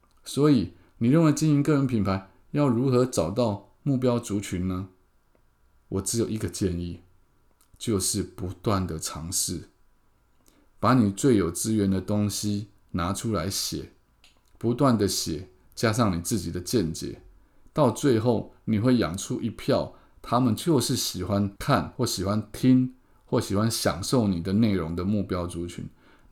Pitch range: 95-120 Hz